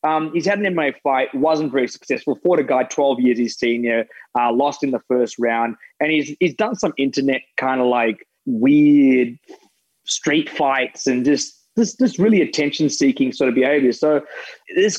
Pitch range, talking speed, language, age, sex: 125-165 Hz, 190 wpm, English, 20-39, male